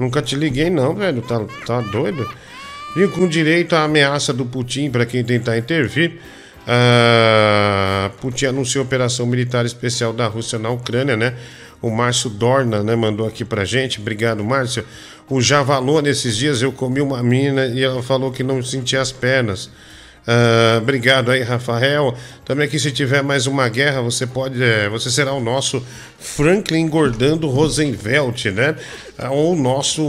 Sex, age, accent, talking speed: male, 50-69, Brazilian, 165 wpm